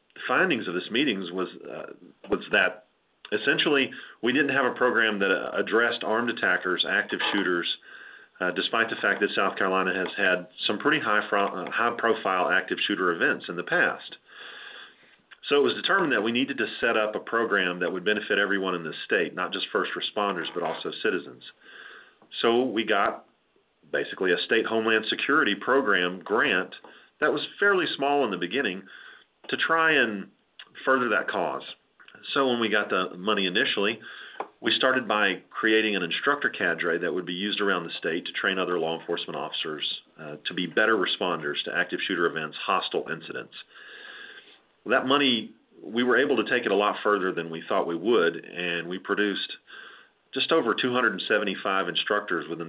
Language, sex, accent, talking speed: English, male, American, 175 wpm